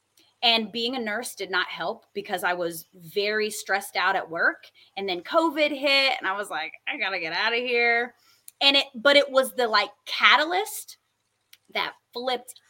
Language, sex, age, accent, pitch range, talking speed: English, female, 30-49, American, 200-280 Hz, 185 wpm